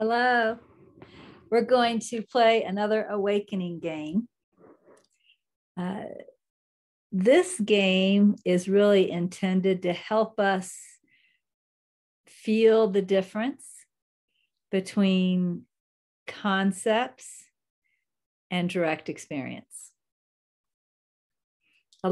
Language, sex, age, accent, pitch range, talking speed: English, female, 50-69, American, 165-195 Hz, 70 wpm